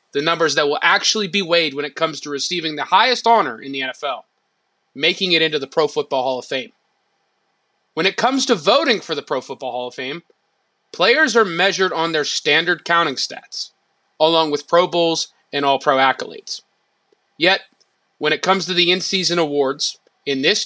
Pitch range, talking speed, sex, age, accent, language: 155-225 Hz, 185 wpm, male, 30-49, American, English